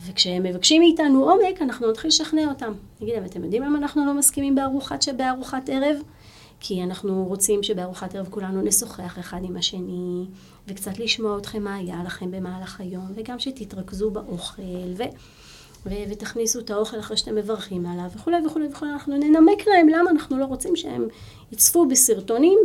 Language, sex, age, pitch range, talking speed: Hebrew, female, 30-49, 185-270 Hz, 165 wpm